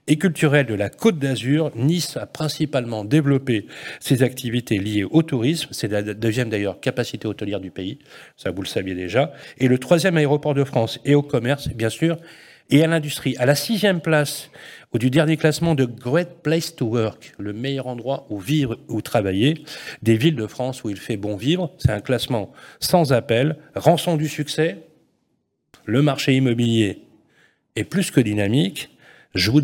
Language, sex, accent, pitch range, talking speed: French, male, French, 115-155 Hz, 175 wpm